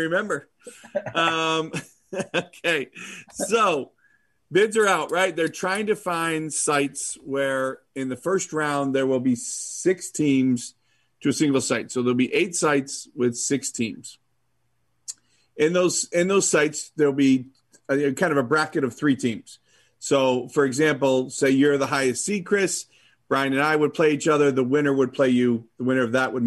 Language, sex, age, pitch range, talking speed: English, male, 40-59, 120-150 Hz, 170 wpm